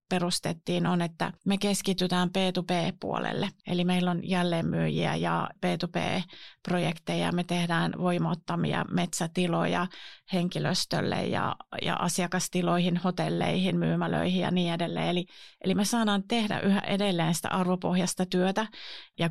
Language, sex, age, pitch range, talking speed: Finnish, female, 30-49, 175-200 Hz, 130 wpm